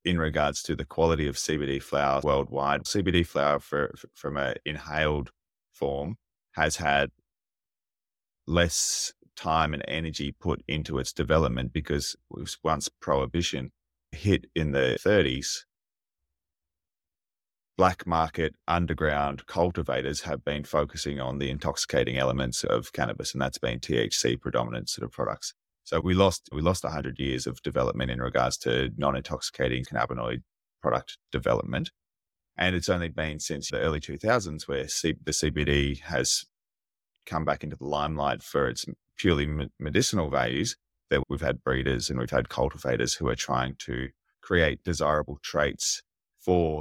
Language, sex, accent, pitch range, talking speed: English, male, Australian, 70-80 Hz, 145 wpm